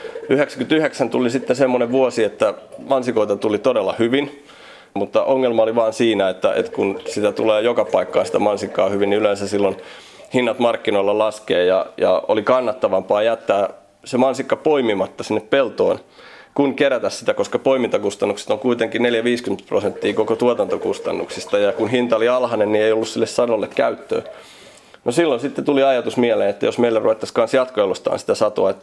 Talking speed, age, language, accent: 160 wpm, 30-49, Finnish, native